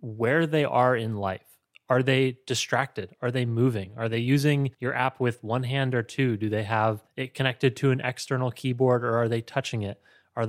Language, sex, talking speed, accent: English, male, 205 wpm, American